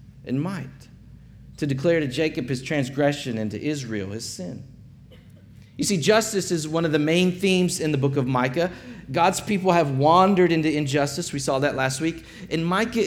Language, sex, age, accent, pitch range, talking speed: English, male, 40-59, American, 140-185 Hz, 185 wpm